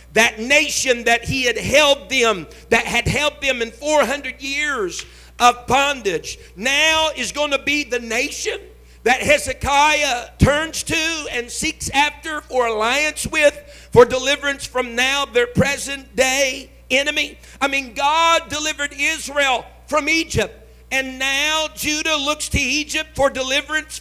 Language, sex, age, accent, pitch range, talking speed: English, male, 50-69, American, 250-305 Hz, 140 wpm